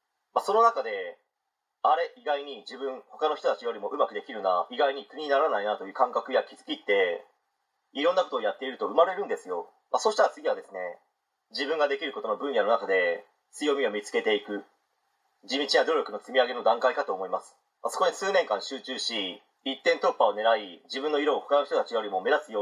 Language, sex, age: Japanese, male, 30-49